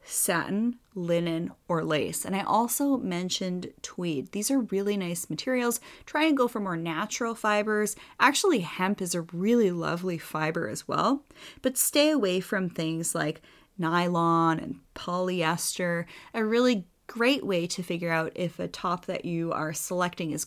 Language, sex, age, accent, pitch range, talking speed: English, female, 30-49, American, 170-225 Hz, 160 wpm